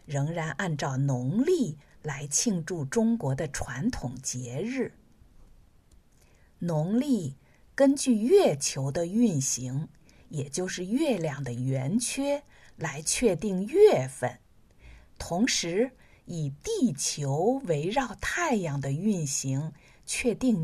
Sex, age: female, 50-69